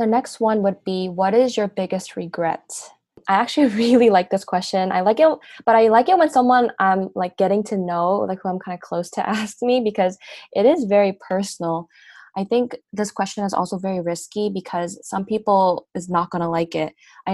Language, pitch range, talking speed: English, 185-220 Hz, 210 wpm